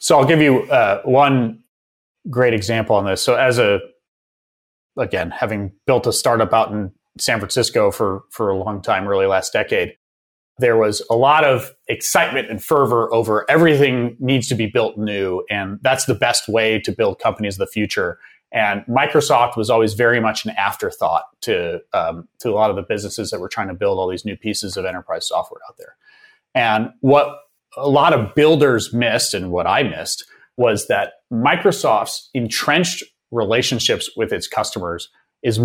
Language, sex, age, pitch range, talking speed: English, male, 30-49, 105-145 Hz, 180 wpm